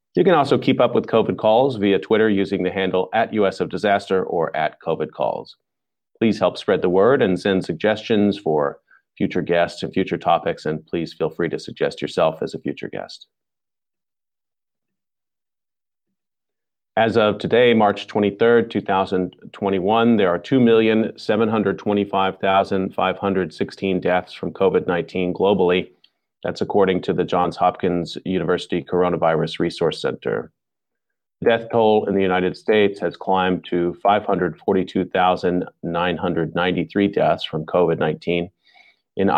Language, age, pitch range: English, 30-49, 90-105 Hz